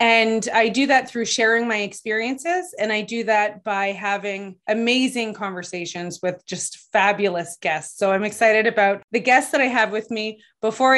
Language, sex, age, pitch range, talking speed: English, female, 30-49, 195-240 Hz, 175 wpm